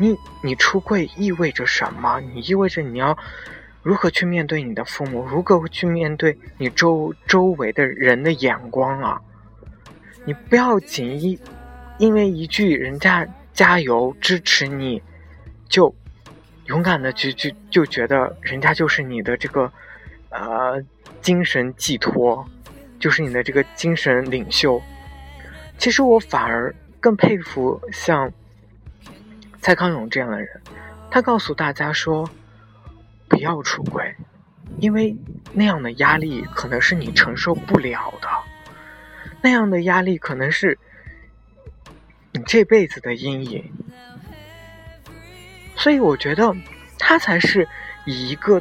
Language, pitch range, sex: Chinese, 125-185 Hz, male